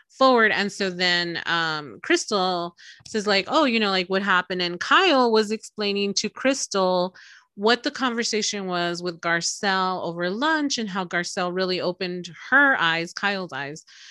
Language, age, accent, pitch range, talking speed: English, 30-49, American, 175-240 Hz, 155 wpm